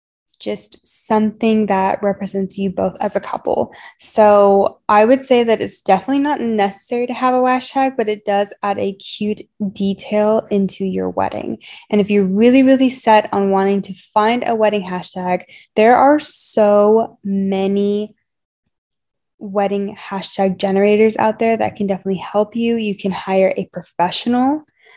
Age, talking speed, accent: 10-29, 155 wpm, American